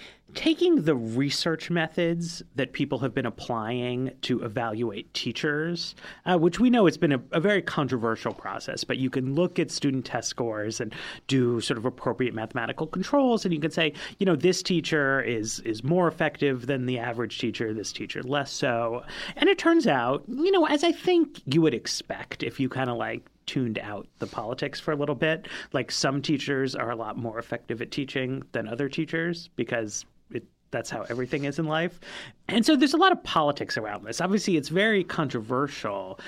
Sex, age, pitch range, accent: male, 30-49, 120-175 Hz, American